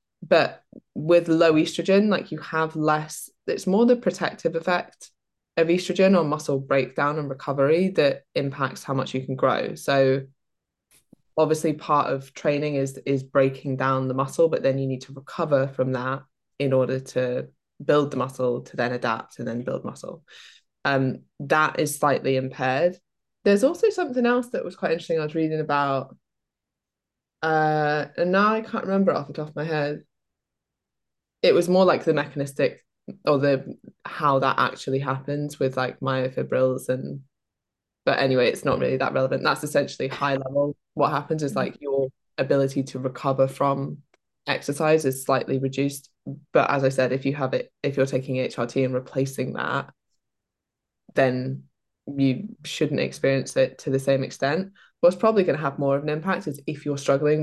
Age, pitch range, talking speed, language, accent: 20-39, 130-155 Hz, 170 wpm, English, British